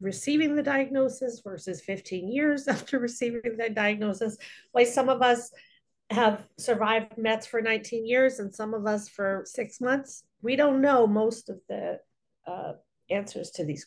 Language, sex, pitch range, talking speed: English, female, 175-235 Hz, 160 wpm